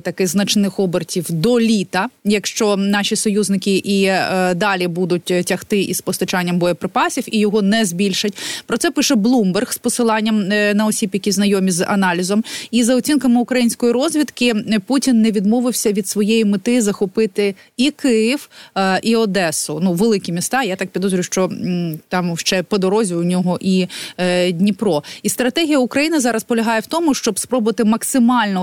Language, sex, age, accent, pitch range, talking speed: Ukrainian, female, 20-39, native, 185-225 Hz, 150 wpm